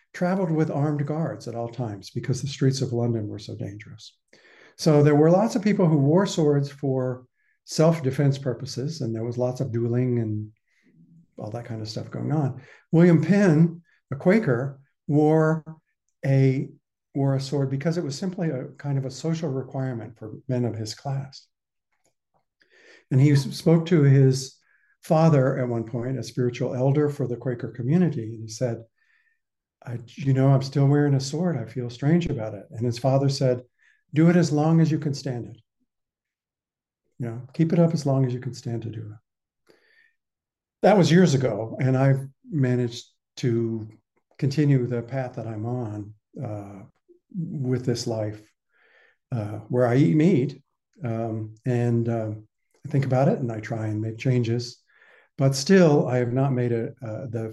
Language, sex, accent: English, male, American